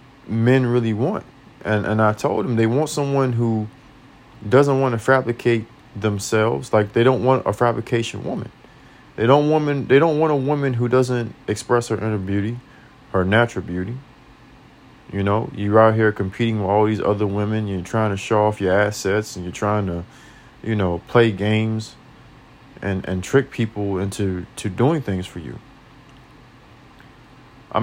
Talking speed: 170 wpm